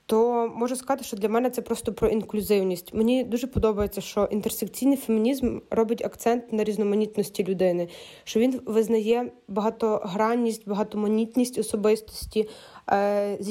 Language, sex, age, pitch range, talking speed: Ukrainian, female, 20-39, 210-235 Hz, 125 wpm